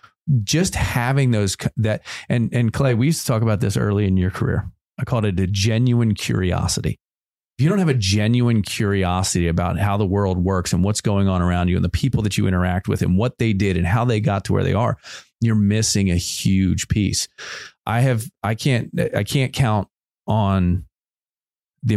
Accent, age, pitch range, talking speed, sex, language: American, 30-49, 95-115 Hz, 200 wpm, male, English